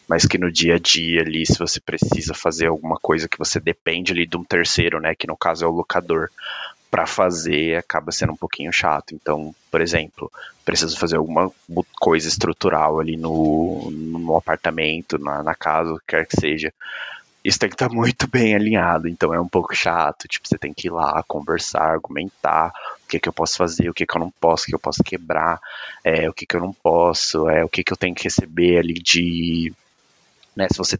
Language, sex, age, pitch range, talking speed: Portuguese, male, 20-39, 80-90 Hz, 230 wpm